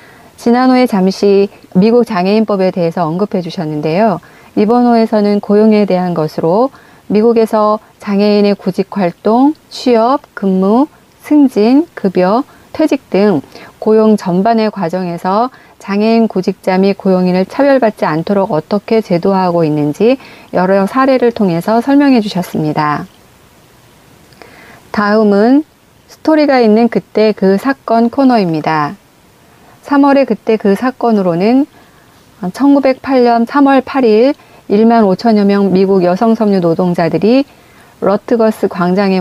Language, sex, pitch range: Korean, female, 185-230 Hz